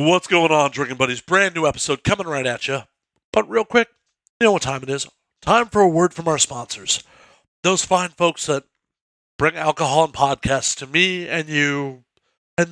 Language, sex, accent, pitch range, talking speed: English, male, American, 145-190 Hz, 195 wpm